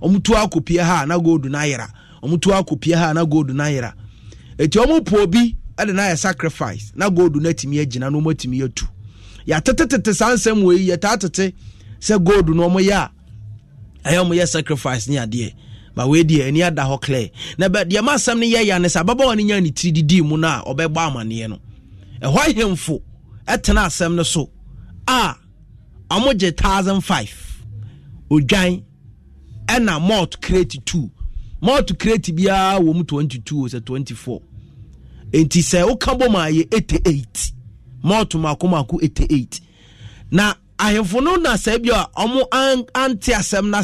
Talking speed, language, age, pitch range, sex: 145 wpm, English, 30-49, 130-205 Hz, male